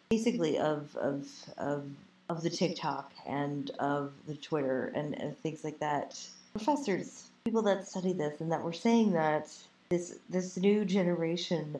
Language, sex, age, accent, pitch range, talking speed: English, female, 30-49, American, 140-170 Hz, 155 wpm